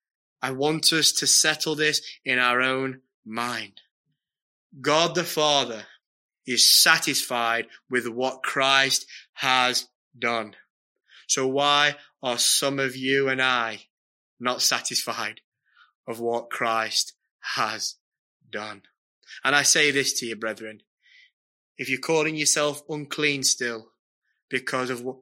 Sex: male